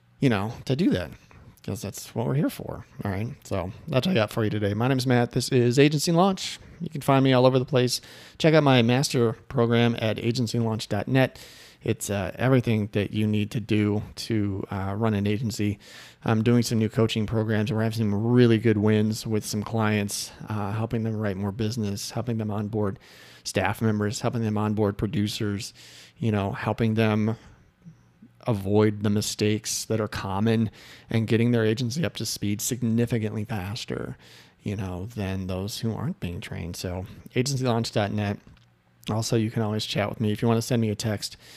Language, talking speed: English, 190 wpm